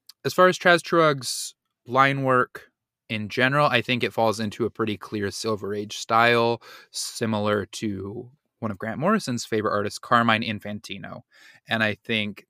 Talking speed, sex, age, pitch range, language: 160 wpm, male, 20-39, 110-135 Hz, English